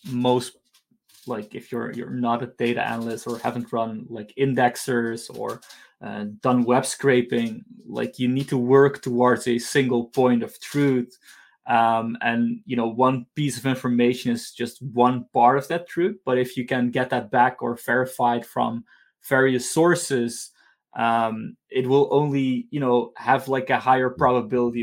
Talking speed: 165 wpm